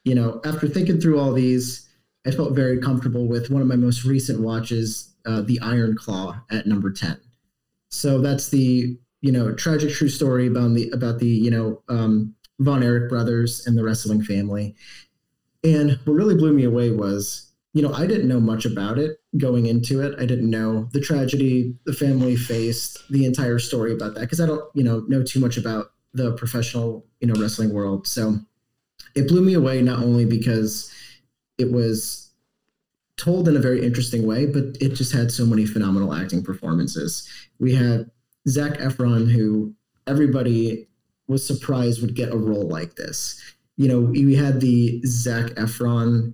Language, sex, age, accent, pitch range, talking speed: English, male, 30-49, American, 110-130 Hz, 180 wpm